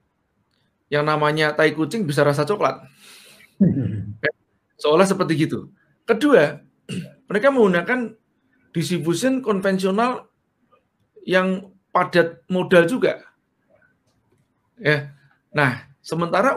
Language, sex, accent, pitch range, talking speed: Indonesian, male, native, 140-195 Hz, 80 wpm